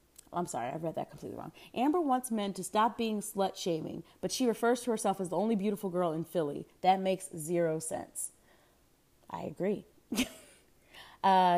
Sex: female